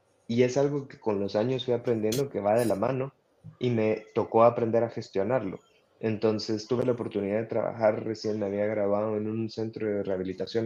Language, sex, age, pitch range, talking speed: Spanish, male, 20-39, 105-120 Hz, 195 wpm